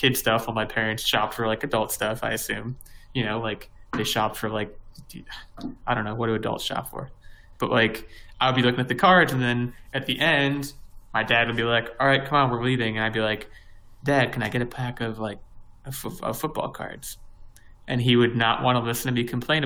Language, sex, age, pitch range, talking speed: English, male, 20-39, 110-130 Hz, 230 wpm